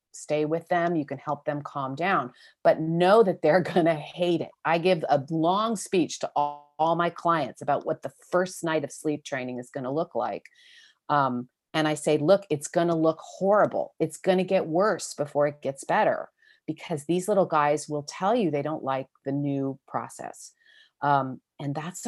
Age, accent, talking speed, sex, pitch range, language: 40-59, American, 205 wpm, female, 145-185 Hz, English